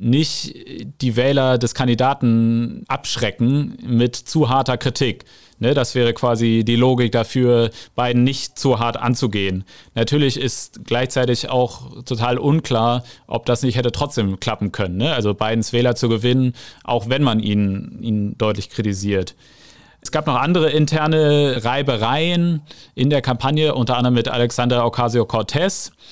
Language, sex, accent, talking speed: German, male, German, 140 wpm